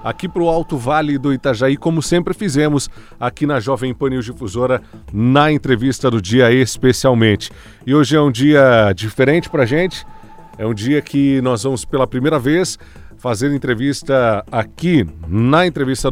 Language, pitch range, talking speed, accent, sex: Portuguese, 115-145 Hz, 165 wpm, Brazilian, male